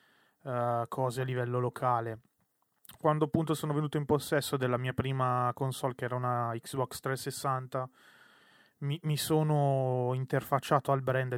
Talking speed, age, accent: 130 wpm, 20-39, native